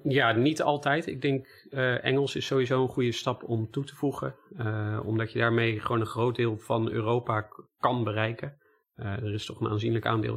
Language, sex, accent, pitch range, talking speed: Dutch, male, Dutch, 110-120 Hz, 210 wpm